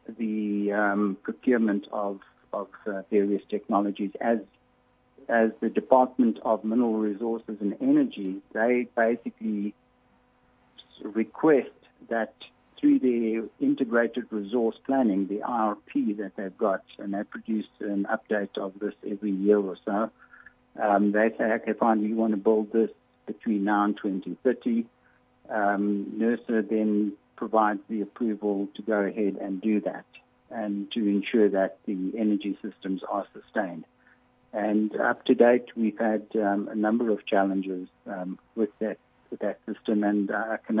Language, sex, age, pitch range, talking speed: English, male, 60-79, 100-115 Hz, 145 wpm